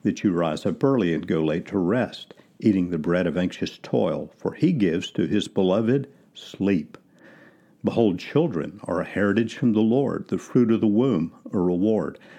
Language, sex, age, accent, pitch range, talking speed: English, male, 50-69, American, 90-130 Hz, 185 wpm